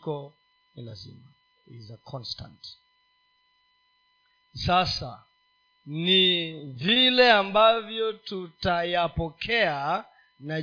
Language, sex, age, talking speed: Swahili, male, 40-59, 55 wpm